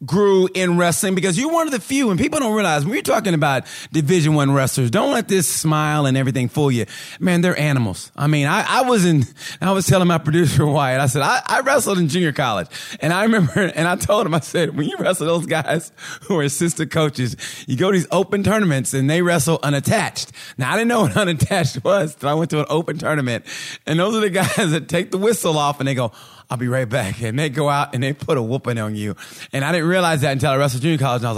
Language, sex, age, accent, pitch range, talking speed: English, male, 30-49, American, 135-180 Hz, 255 wpm